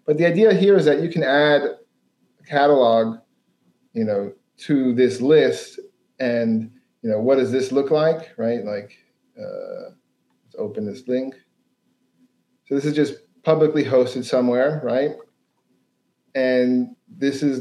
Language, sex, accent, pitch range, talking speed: English, male, American, 120-160 Hz, 145 wpm